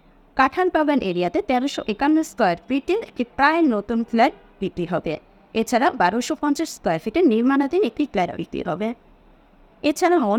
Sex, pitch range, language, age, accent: female, 195-295 Hz, English, 20-39, Indian